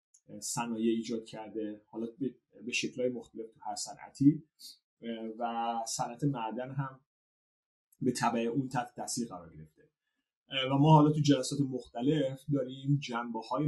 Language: Persian